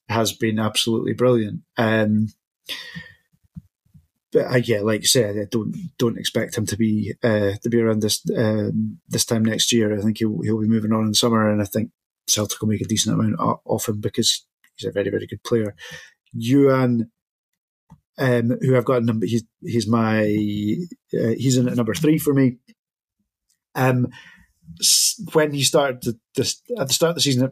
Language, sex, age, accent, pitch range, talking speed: English, male, 30-49, British, 110-125 Hz, 190 wpm